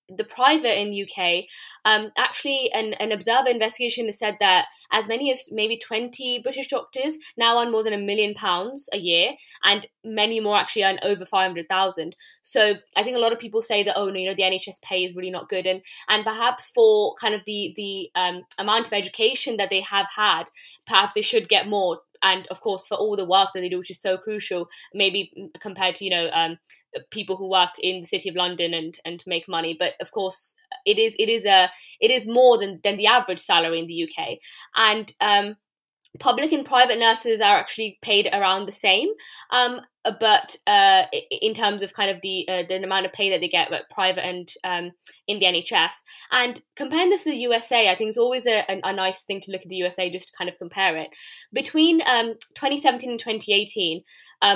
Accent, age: British, 20-39